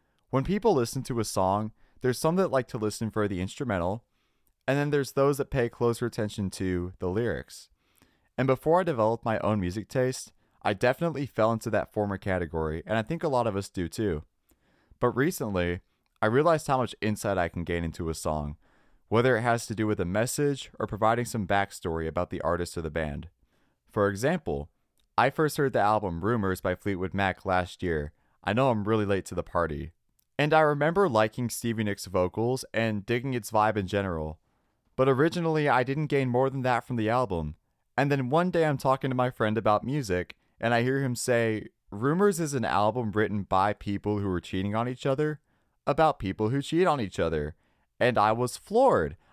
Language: English